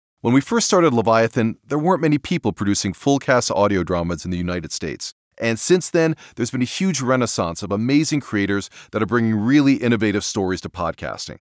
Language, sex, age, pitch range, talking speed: English, male, 30-49, 105-145 Hz, 185 wpm